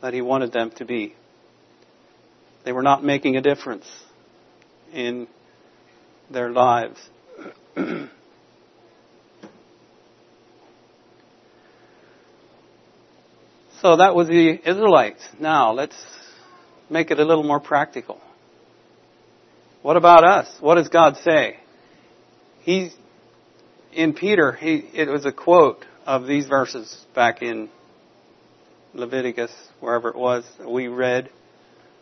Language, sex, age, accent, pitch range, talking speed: English, male, 60-79, American, 130-170 Hz, 100 wpm